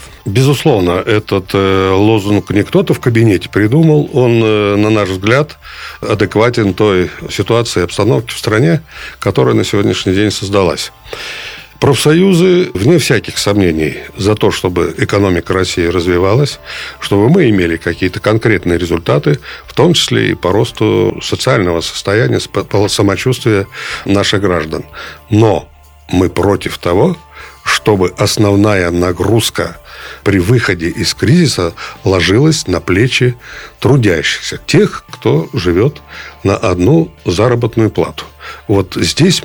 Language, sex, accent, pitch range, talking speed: Russian, male, native, 90-120 Hz, 115 wpm